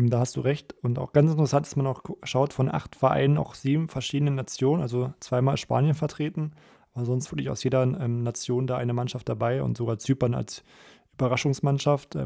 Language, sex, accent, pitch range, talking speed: German, male, German, 120-135 Hz, 190 wpm